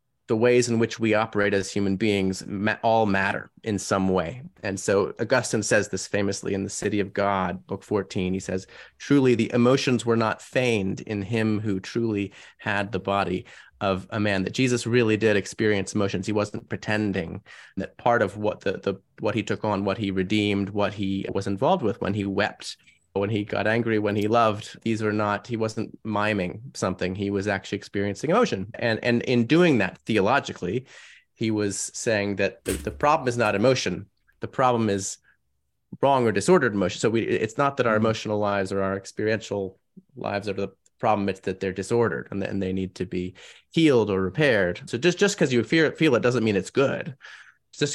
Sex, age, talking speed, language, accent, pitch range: male, 30-49, 200 wpm, English, American, 95-115 Hz